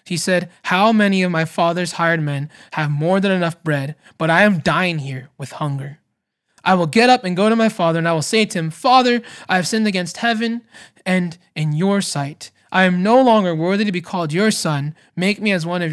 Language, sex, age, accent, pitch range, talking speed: English, male, 20-39, American, 155-205 Hz, 230 wpm